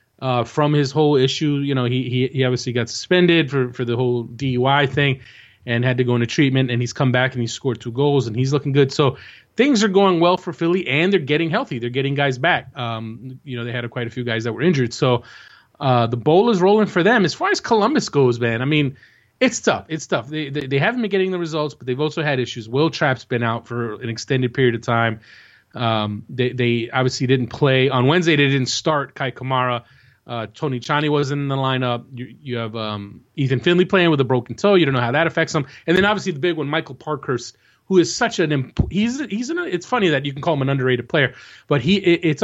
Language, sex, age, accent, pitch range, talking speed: English, male, 30-49, American, 125-170 Hz, 245 wpm